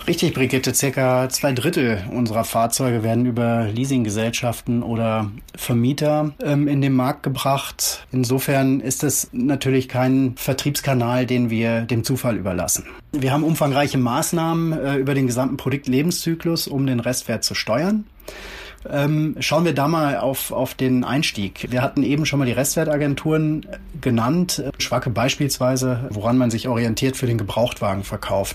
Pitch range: 120-145 Hz